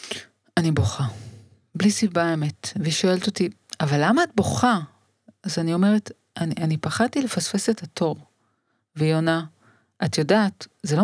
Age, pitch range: 40-59, 145-190 Hz